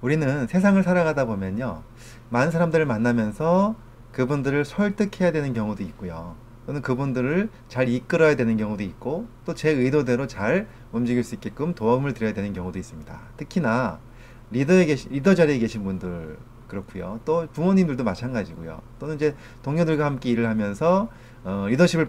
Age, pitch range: 30-49, 110-150 Hz